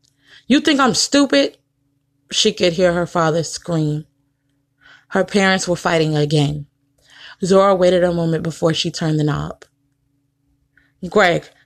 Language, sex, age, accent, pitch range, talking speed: English, female, 20-39, American, 145-195 Hz, 130 wpm